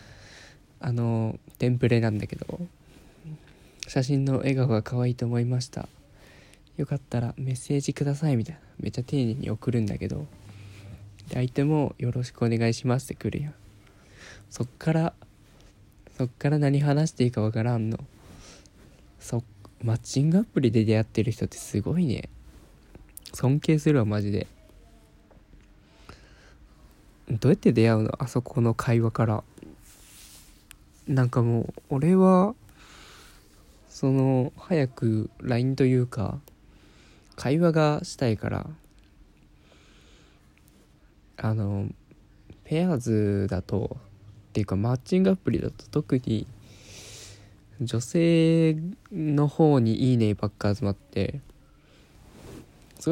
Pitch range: 105-135 Hz